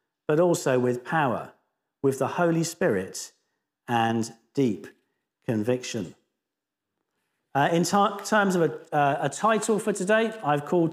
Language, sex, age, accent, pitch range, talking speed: English, male, 50-69, British, 150-205 Hz, 125 wpm